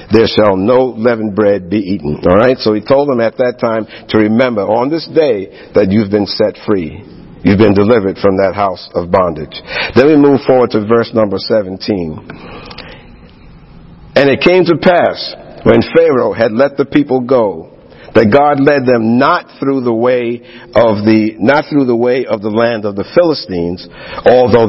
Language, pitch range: English, 105-125 Hz